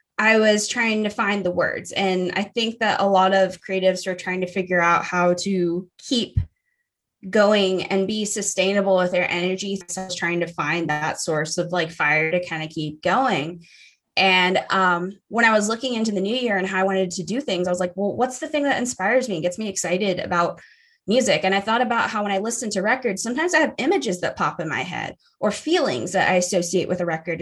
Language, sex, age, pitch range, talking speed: English, female, 20-39, 185-240 Hz, 230 wpm